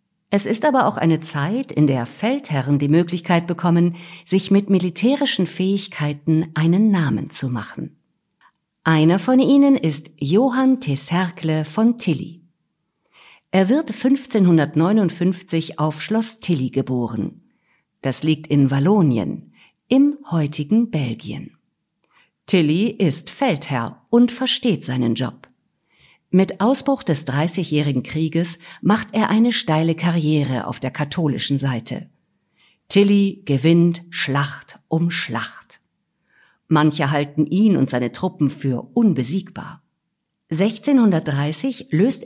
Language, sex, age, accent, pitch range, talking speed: German, female, 50-69, German, 145-200 Hz, 110 wpm